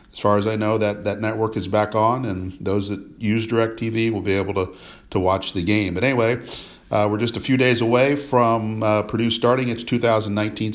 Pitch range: 100-115 Hz